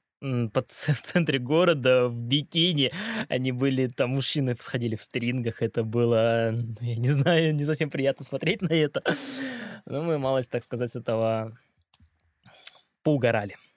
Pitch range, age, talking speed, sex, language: 120-180 Hz, 20-39, 140 wpm, male, Russian